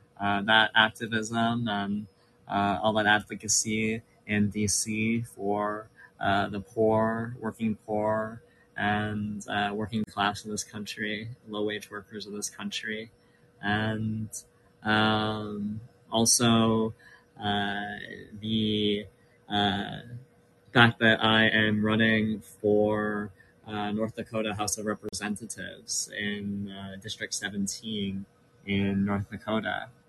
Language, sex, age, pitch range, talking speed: English, male, 20-39, 105-115 Hz, 105 wpm